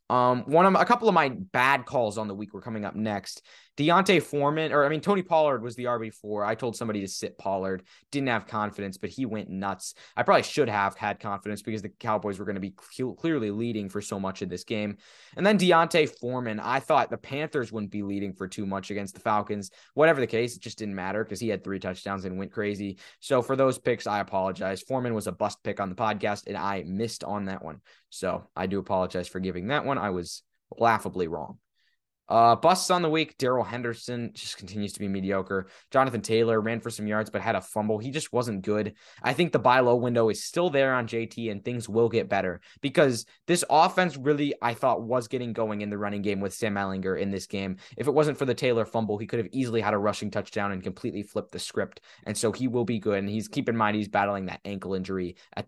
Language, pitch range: English, 100-125 Hz